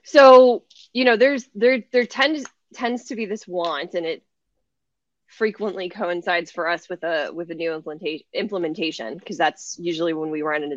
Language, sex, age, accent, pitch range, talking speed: English, female, 20-39, American, 170-215 Hz, 180 wpm